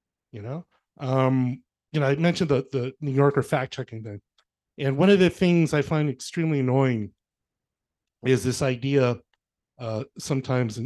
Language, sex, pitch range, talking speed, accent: English, male, 115-140 Hz, 150 wpm, American